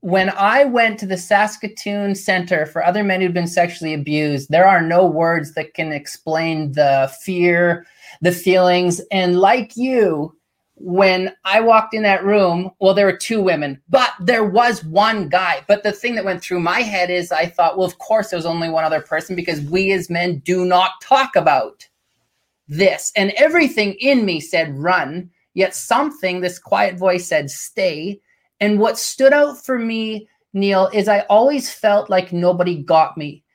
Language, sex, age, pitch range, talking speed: English, male, 30-49, 175-215 Hz, 180 wpm